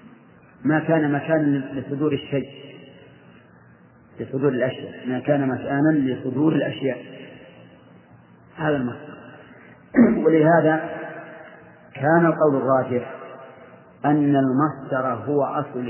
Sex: male